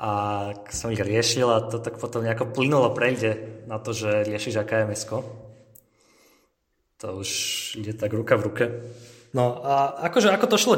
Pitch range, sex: 110-130 Hz, male